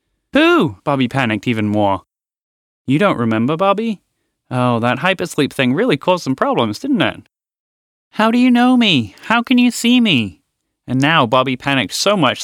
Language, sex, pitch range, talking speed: English, male, 110-165 Hz, 170 wpm